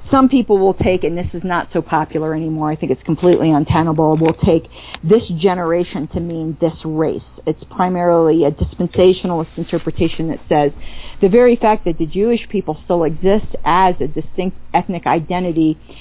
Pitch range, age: 155-180 Hz, 40-59